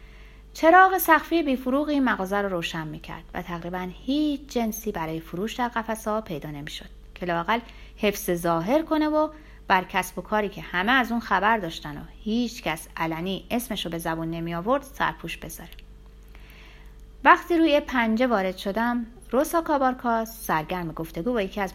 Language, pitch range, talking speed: Persian, 170-265 Hz, 155 wpm